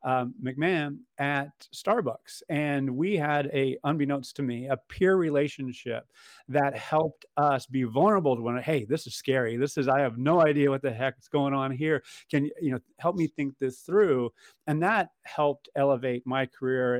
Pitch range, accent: 120-145 Hz, American